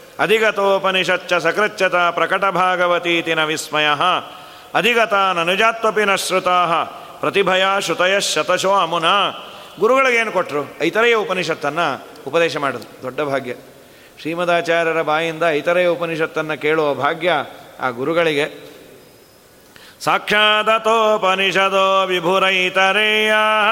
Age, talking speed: 40-59, 75 wpm